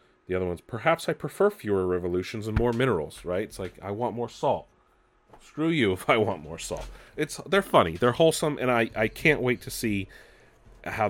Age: 30-49